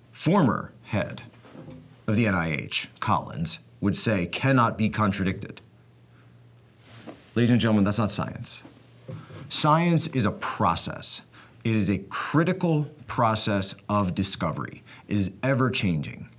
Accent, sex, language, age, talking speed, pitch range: American, male, English, 30-49, 115 wpm, 95-120 Hz